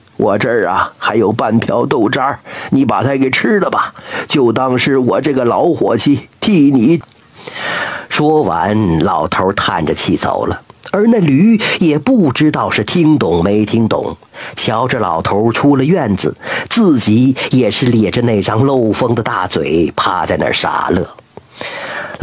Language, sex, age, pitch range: Chinese, male, 50-69, 110-170 Hz